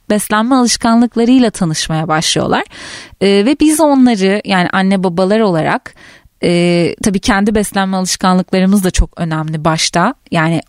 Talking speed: 125 wpm